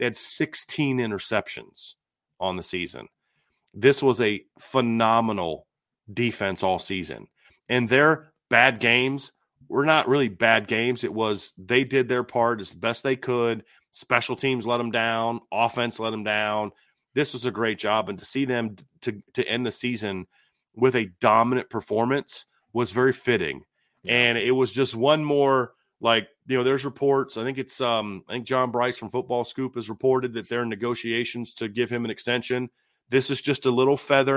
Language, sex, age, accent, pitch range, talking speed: English, male, 30-49, American, 115-145 Hz, 175 wpm